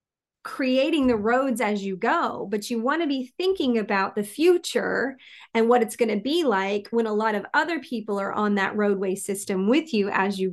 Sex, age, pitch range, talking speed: female, 30-49, 200-245 Hz, 210 wpm